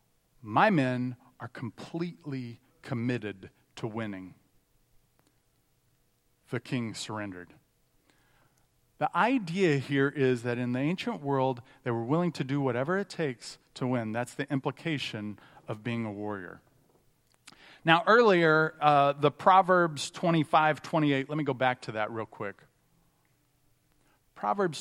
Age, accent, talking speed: 40-59, American, 125 wpm